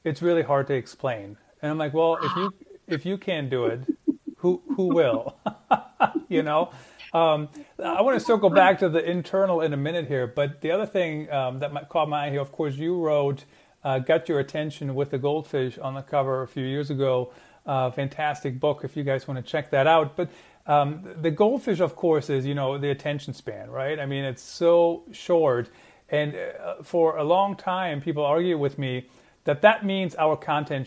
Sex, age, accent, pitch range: male, 40-59, American, 140-175 Hz